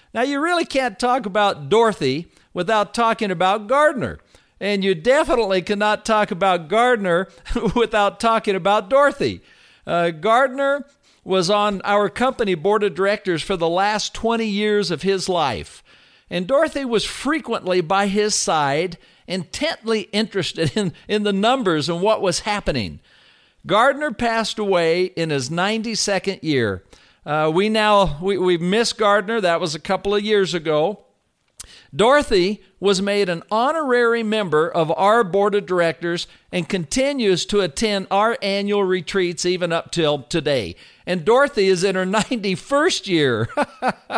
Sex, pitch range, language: male, 180-225 Hz, English